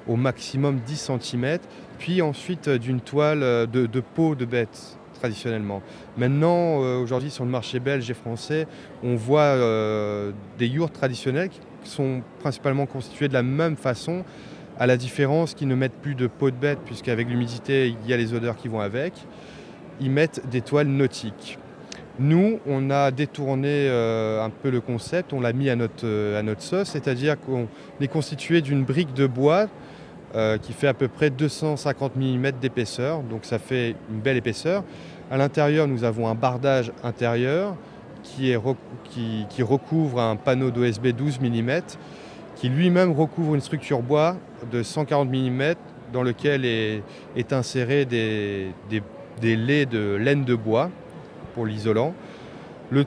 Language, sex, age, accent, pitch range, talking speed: French, male, 20-39, French, 120-145 Hz, 160 wpm